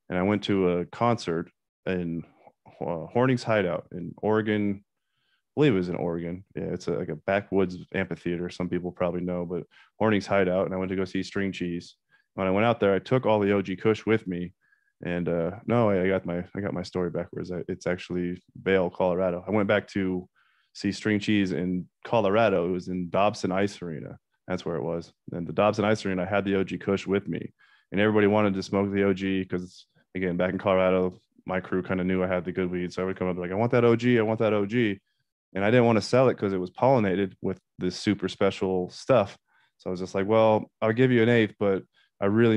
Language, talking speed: English, 235 wpm